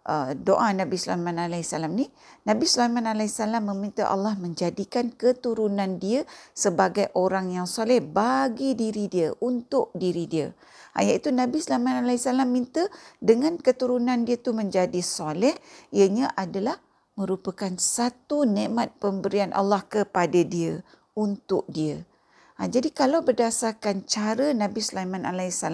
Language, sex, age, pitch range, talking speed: Malay, female, 50-69, 185-245 Hz, 120 wpm